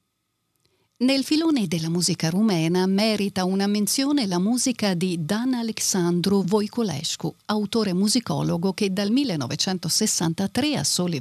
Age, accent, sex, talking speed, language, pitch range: 50-69, native, female, 110 wpm, Italian, 175-230 Hz